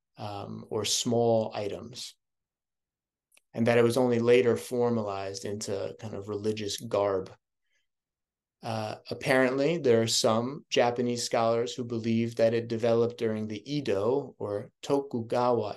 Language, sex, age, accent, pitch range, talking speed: English, male, 30-49, American, 115-130 Hz, 125 wpm